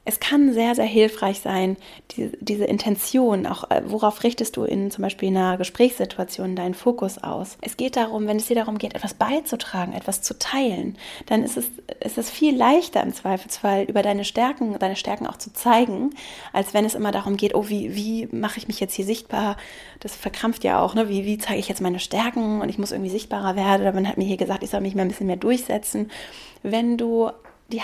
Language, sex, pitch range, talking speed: German, female, 205-240 Hz, 220 wpm